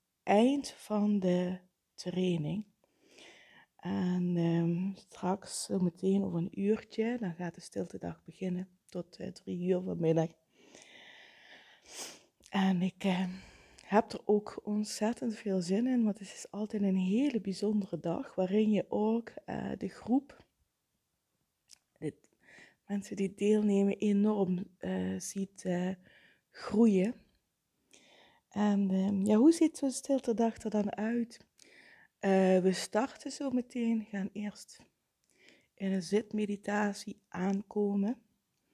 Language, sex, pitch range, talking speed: Dutch, female, 185-215 Hz, 115 wpm